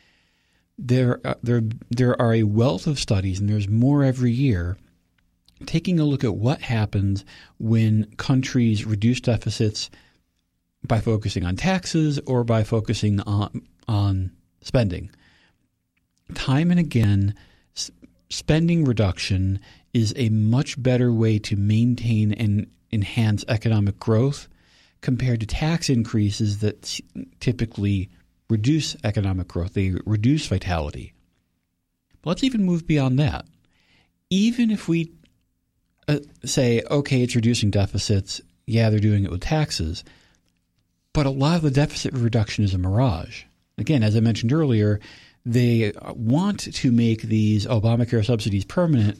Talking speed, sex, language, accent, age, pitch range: 125 wpm, male, English, American, 40-59, 100-130 Hz